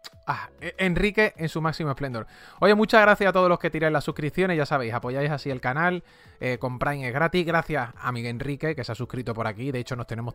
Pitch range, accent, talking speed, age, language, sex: 130-180 Hz, Spanish, 225 wpm, 20-39, English, male